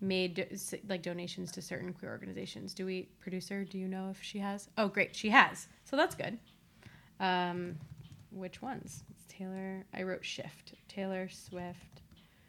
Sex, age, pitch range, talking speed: female, 20-39, 180-200 Hz, 165 wpm